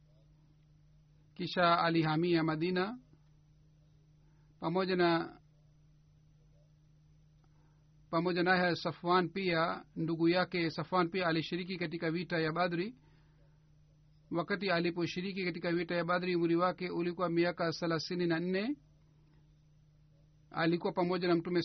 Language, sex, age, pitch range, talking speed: Swahili, male, 50-69, 150-180 Hz, 90 wpm